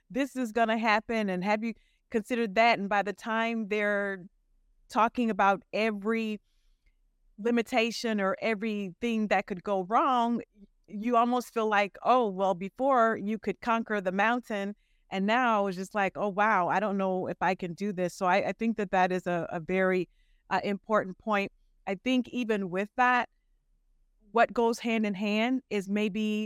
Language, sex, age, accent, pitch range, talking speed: English, female, 30-49, American, 190-225 Hz, 175 wpm